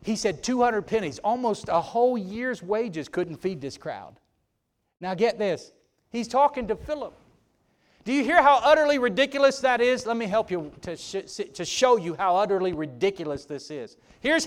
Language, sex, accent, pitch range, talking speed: English, male, American, 215-320 Hz, 170 wpm